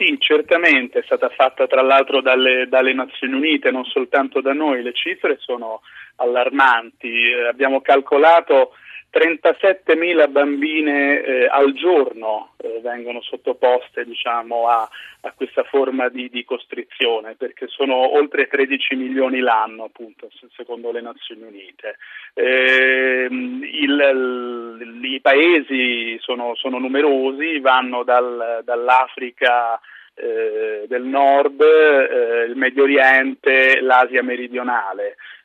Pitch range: 125-165 Hz